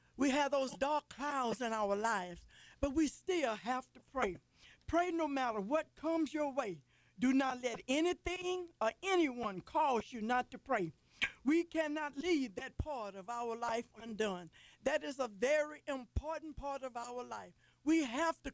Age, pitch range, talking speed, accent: 50-69, 245-320 Hz, 170 wpm, American